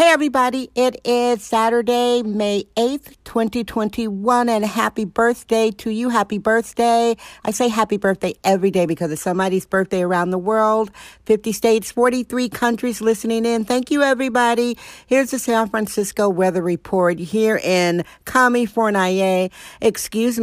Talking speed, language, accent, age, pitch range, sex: 140 wpm, English, American, 50-69, 185-240 Hz, female